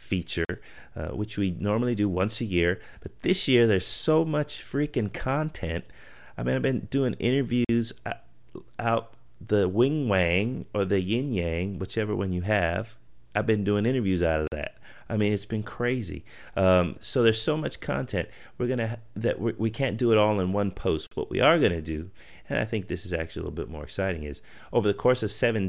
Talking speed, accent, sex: 205 wpm, American, male